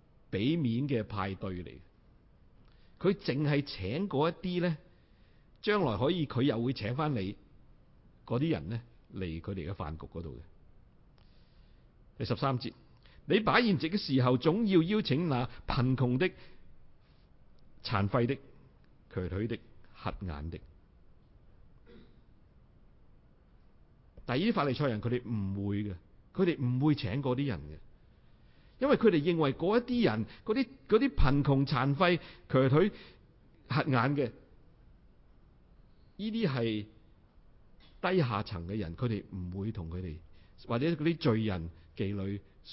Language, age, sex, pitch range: Chinese, 50-69, male, 100-160 Hz